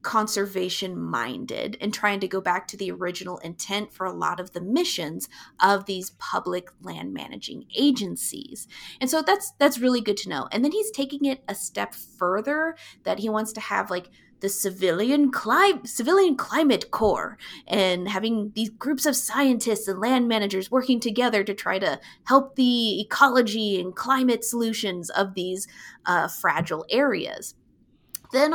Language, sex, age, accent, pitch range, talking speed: English, female, 30-49, American, 195-270 Hz, 160 wpm